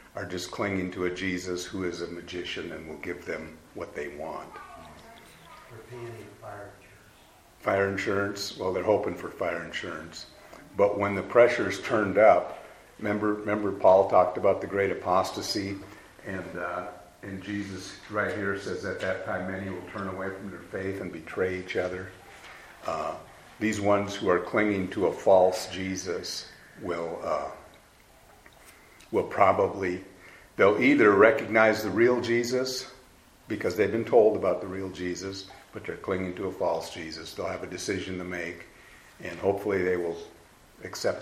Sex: male